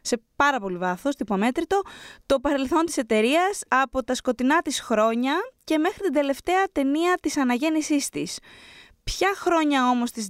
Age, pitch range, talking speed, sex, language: 20-39, 210-280 Hz, 150 wpm, female, Greek